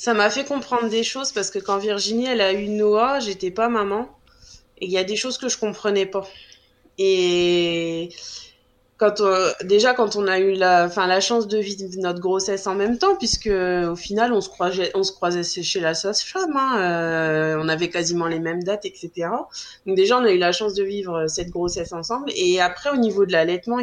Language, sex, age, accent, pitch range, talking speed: French, female, 20-39, French, 180-230 Hz, 215 wpm